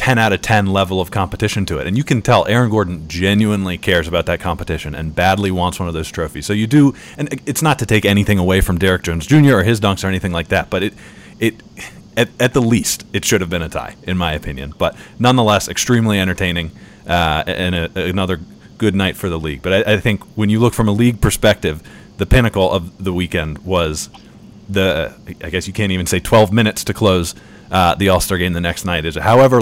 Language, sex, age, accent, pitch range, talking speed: English, male, 30-49, American, 85-105 Hz, 230 wpm